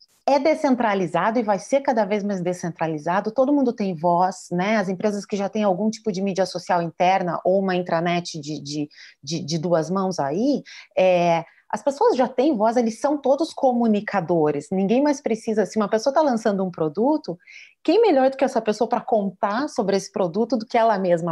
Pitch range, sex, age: 180-230 Hz, female, 30-49